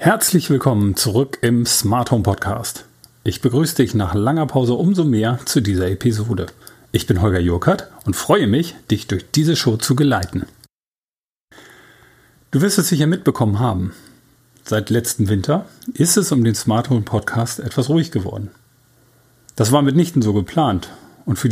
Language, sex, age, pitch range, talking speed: German, male, 40-59, 110-145 Hz, 160 wpm